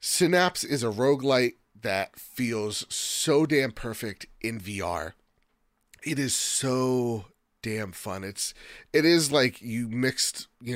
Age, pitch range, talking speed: 30-49, 105-135 Hz, 130 wpm